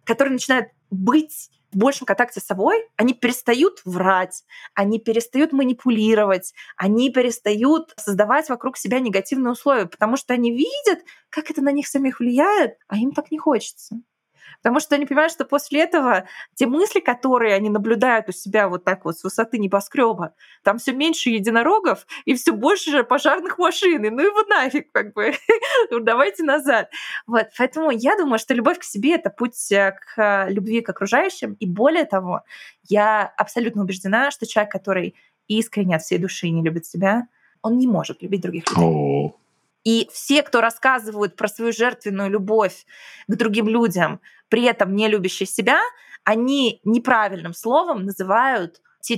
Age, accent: 20-39, native